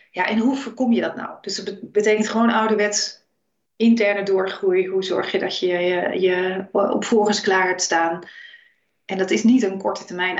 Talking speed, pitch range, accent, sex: 185 wpm, 190-230 Hz, Dutch, female